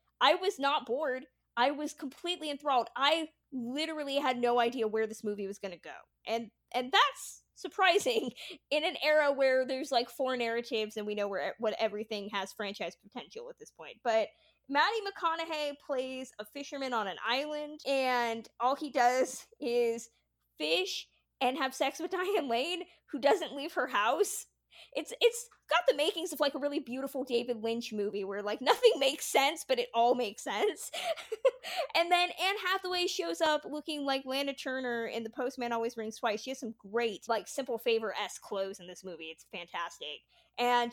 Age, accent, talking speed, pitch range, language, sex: 20-39, American, 180 wpm, 225-300 Hz, English, female